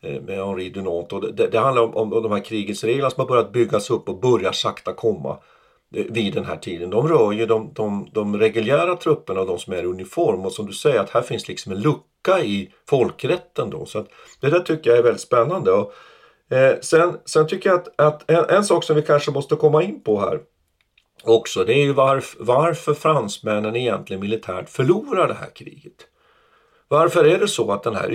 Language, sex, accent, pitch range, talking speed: Swedish, male, native, 105-155 Hz, 215 wpm